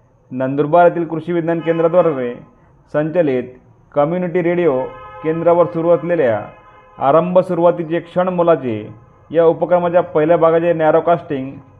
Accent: native